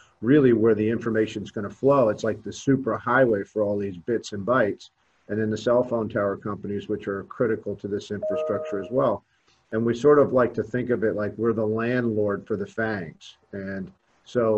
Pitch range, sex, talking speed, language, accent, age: 105-115 Hz, male, 215 wpm, English, American, 50-69